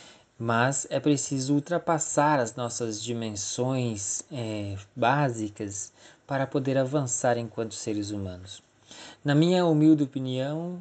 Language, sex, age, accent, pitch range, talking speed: Portuguese, male, 20-39, Brazilian, 110-140 Hz, 105 wpm